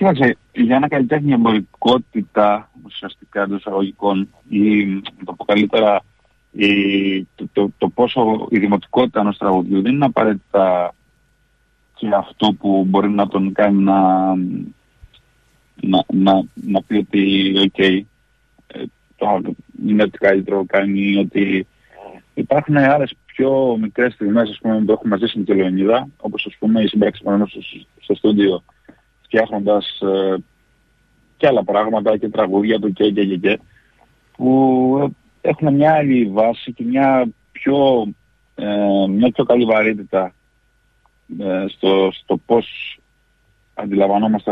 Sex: male